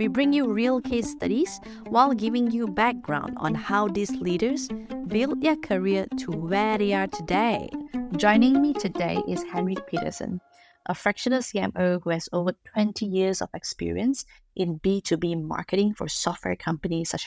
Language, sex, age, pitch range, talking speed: English, female, 20-39, 175-220 Hz, 155 wpm